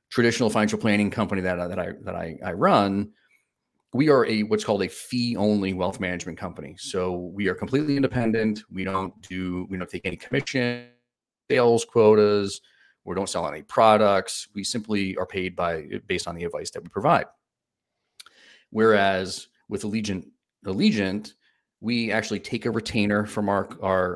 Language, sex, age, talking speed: English, male, 30-49, 165 wpm